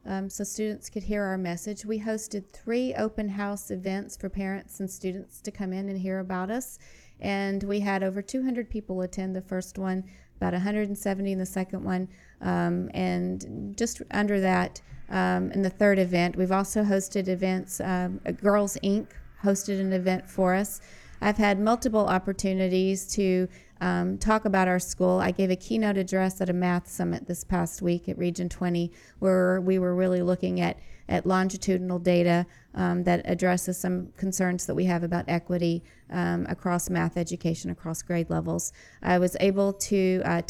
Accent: American